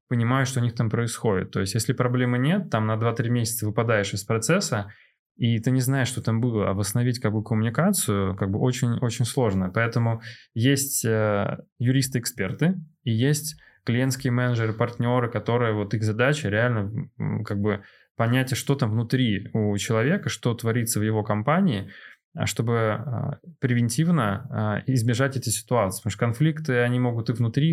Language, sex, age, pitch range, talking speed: Russian, male, 20-39, 110-135 Hz, 160 wpm